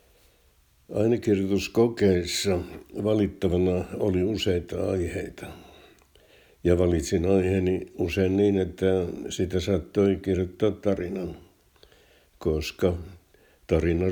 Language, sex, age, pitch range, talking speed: Finnish, male, 60-79, 80-95 Hz, 70 wpm